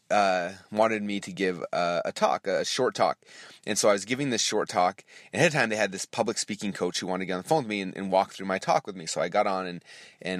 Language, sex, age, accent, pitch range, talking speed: English, male, 30-49, American, 100-125 Hz, 305 wpm